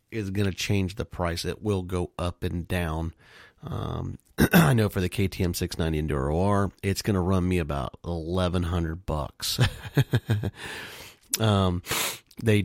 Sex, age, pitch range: male, 30-49, 85-105 Hz